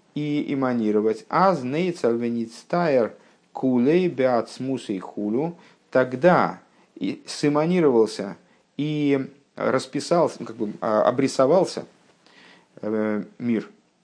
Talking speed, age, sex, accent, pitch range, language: 70 wpm, 50-69, male, native, 105-140 Hz, Russian